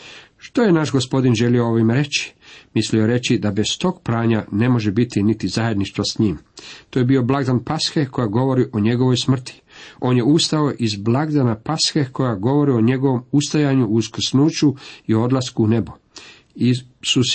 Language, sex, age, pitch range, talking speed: Croatian, male, 50-69, 110-140 Hz, 170 wpm